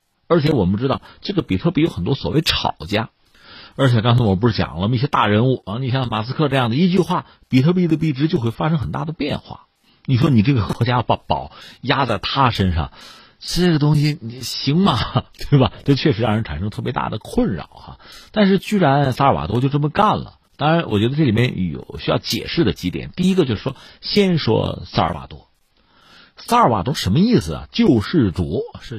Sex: male